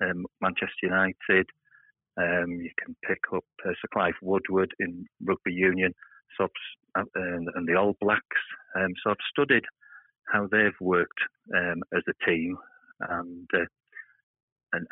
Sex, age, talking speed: male, 40-59, 150 wpm